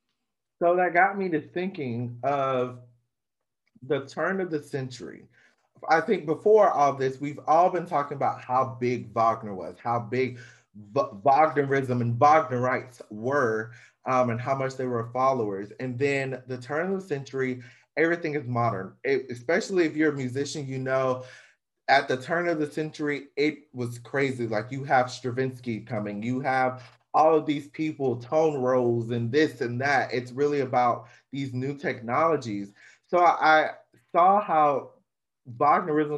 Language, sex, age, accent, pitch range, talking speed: English, male, 30-49, American, 125-155 Hz, 160 wpm